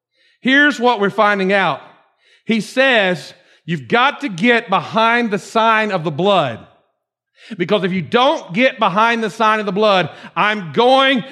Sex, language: male, English